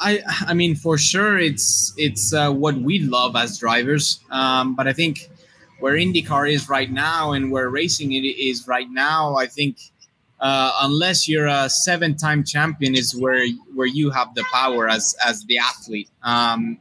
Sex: male